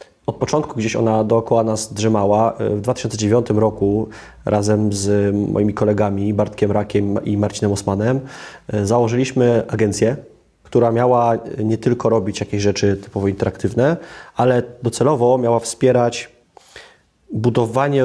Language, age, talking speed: Polish, 30-49, 115 wpm